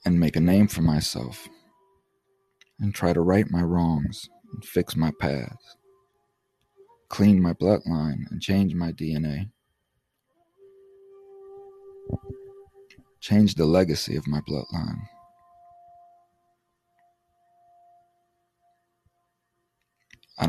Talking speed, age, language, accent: 90 wpm, 40-59, English, American